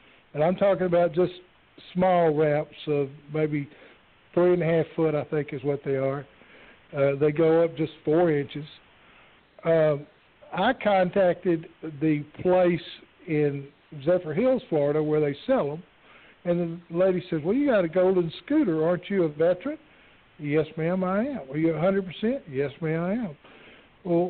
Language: English